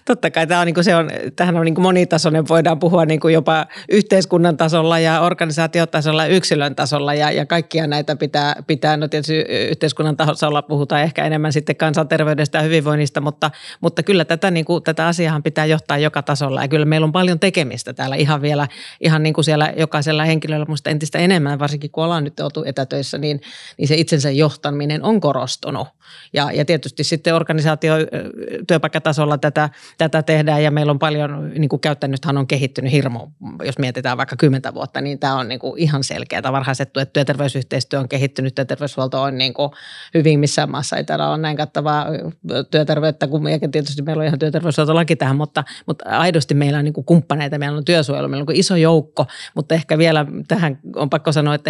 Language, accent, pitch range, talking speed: Finnish, native, 145-160 Hz, 185 wpm